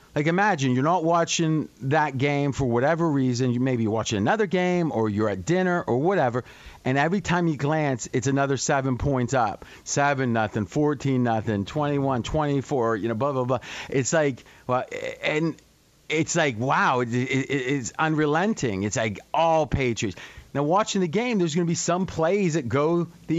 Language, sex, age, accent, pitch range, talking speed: English, male, 40-59, American, 125-170 Hz, 180 wpm